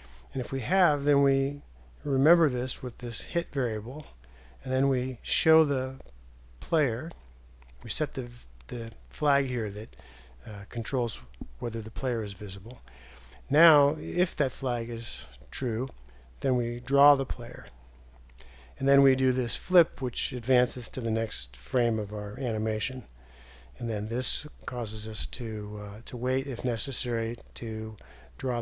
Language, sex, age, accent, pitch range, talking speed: English, male, 50-69, American, 100-135 Hz, 150 wpm